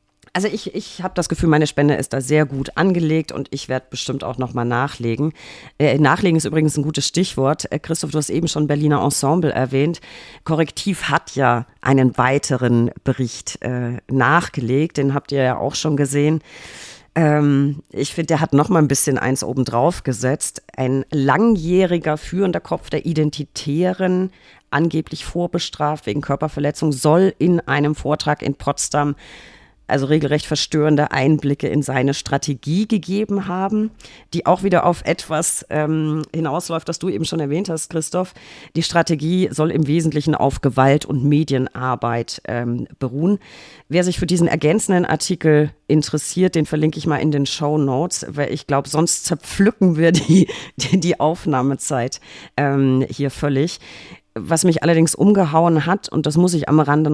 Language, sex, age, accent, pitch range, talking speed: German, female, 40-59, German, 140-165 Hz, 160 wpm